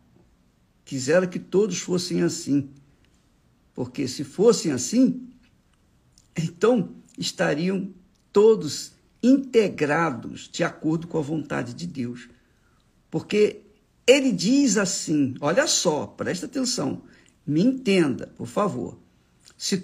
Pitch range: 145-225 Hz